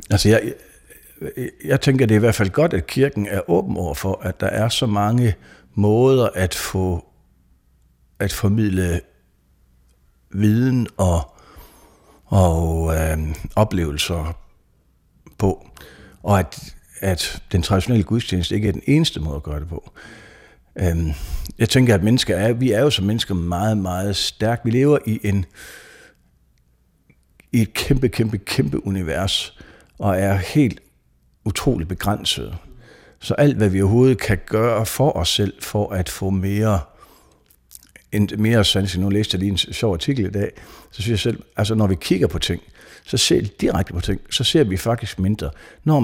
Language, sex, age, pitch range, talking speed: Danish, male, 60-79, 85-110 Hz, 165 wpm